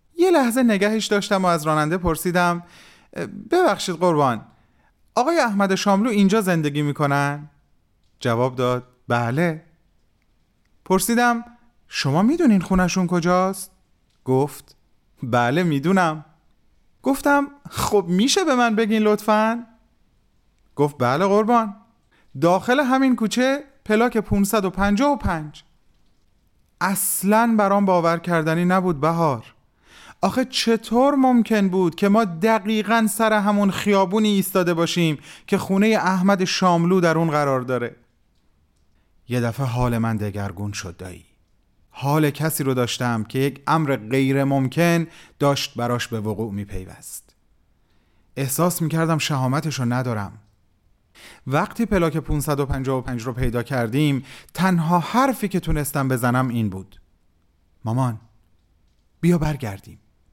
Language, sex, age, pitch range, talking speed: Persian, male, 30-49, 125-205 Hz, 110 wpm